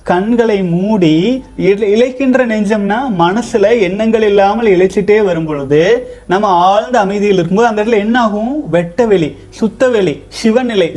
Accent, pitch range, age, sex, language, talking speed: native, 175-230 Hz, 30-49, male, Tamil, 110 wpm